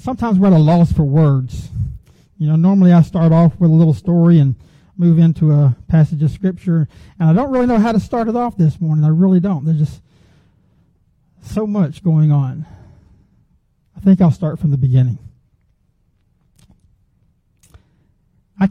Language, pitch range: English, 130-170 Hz